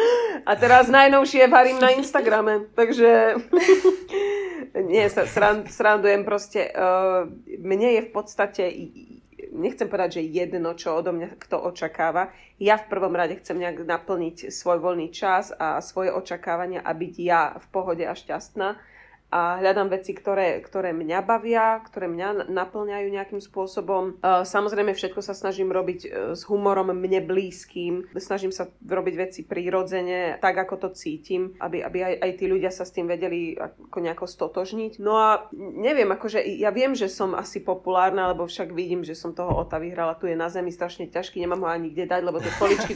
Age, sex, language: 30-49, female, Slovak